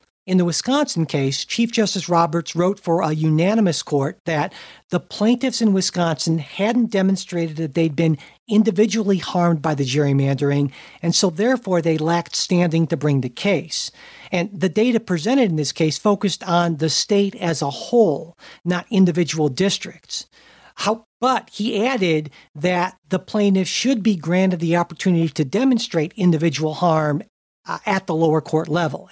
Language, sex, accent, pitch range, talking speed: English, male, American, 160-200 Hz, 155 wpm